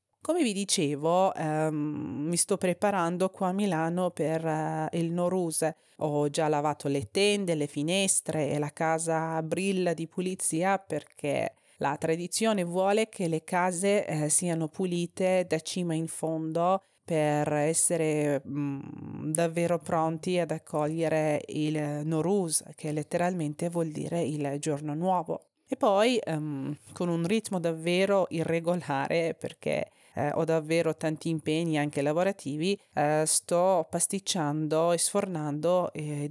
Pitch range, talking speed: 155-190 Hz, 125 wpm